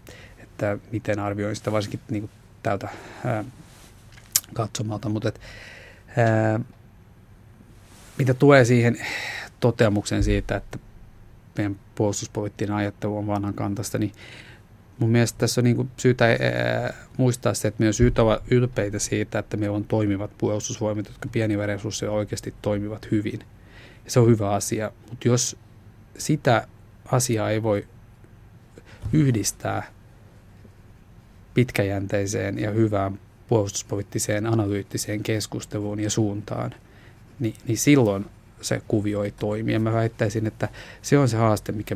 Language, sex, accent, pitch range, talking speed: Finnish, male, native, 105-115 Hz, 120 wpm